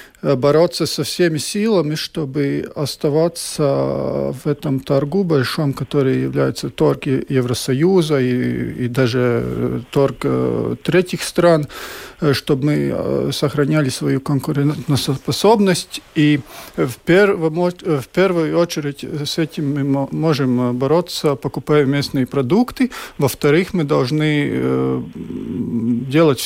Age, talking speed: 50-69, 100 wpm